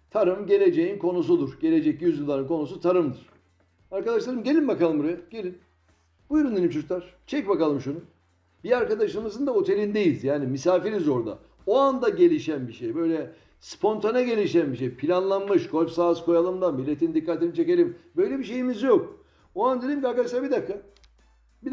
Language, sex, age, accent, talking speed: Turkish, male, 60-79, native, 145 wpm